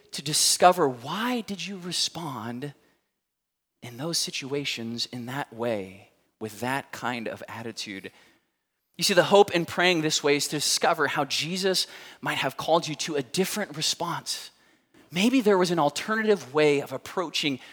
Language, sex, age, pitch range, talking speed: English, male, 20-39, 135-175 Hz, 155 wpm